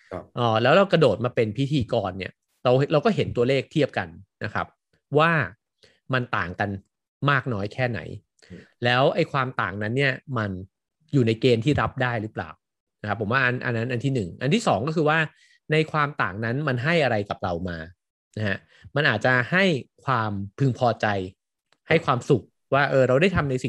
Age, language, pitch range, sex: 30-49, Thai, 110-145 Hz, male